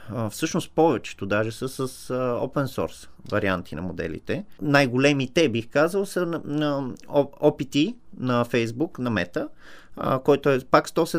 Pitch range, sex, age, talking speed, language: 120-155 Hz, male, 30-49, 135 wpm, Bulgarian